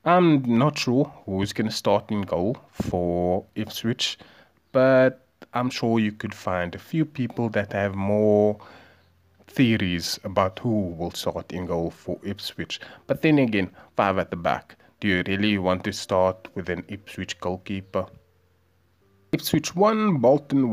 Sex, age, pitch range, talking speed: male, 30-49, 95-135 Hz, 150 wpm